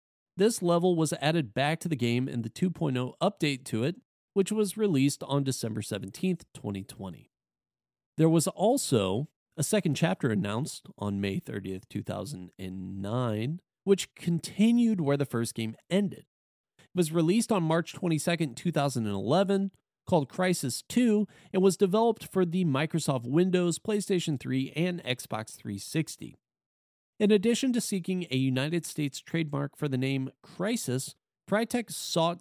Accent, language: American, English